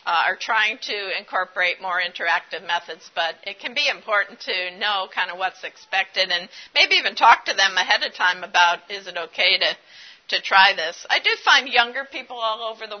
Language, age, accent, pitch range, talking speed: English, 50-69, American, 175-220 Hz, 210 wpm